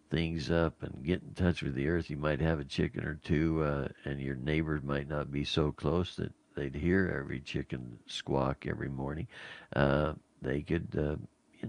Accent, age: American, 60-79